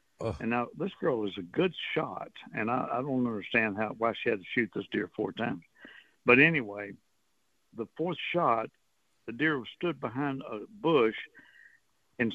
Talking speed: 175 wpm